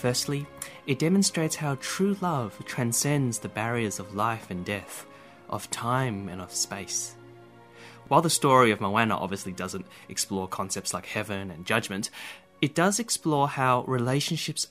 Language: English